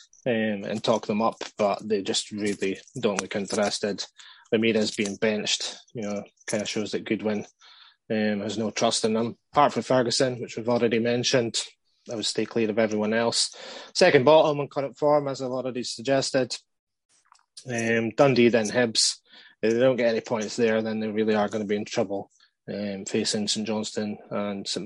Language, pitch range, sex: English, 105-130 Hz, male